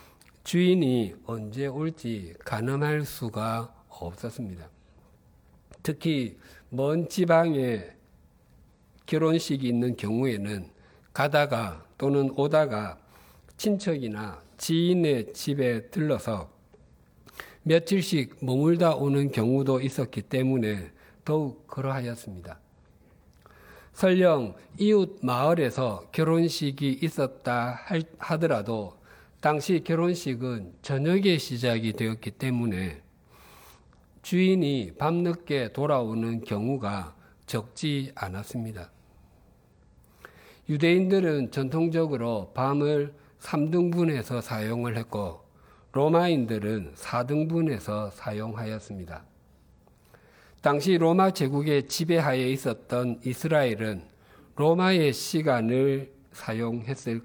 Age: 50-69